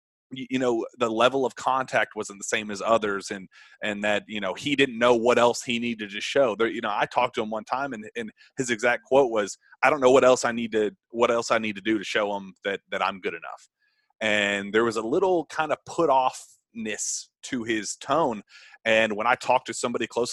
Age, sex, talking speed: 30-49, male, 250 wpm